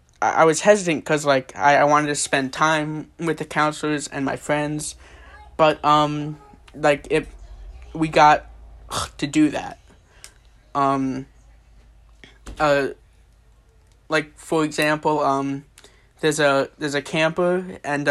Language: English